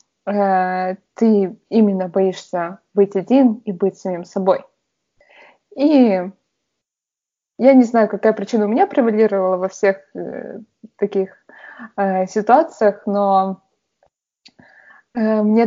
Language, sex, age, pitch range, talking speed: Russian, female, 20-39, 200-245 Hz, 90 wpm